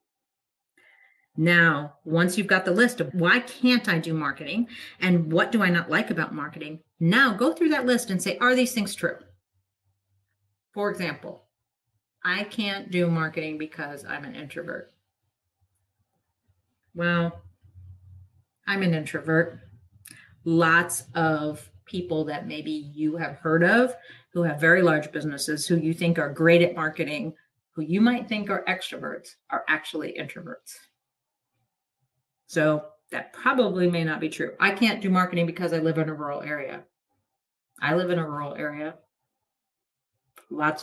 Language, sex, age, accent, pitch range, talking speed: English, female, 40-59, American, 145-180 Hz, 145 wpm